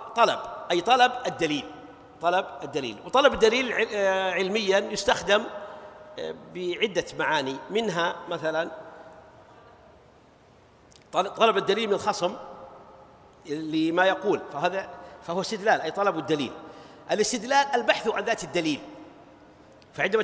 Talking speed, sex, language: 95 wpm, male, Arabic